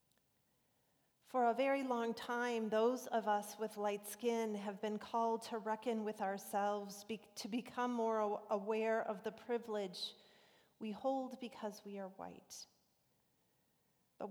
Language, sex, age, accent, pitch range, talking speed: English, female, 40-59, American, 200-230 Hz, 135 wpm